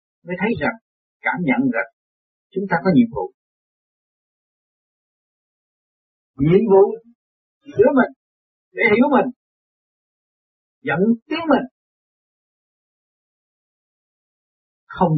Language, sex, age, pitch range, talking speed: Vietnamese, male, 50-69, 165-250 Hz, 85 wpm